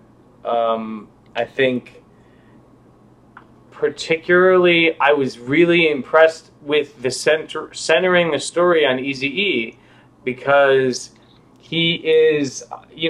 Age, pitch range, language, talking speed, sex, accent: 30-49, 120-160 Hz, English, 95 wpm, male, American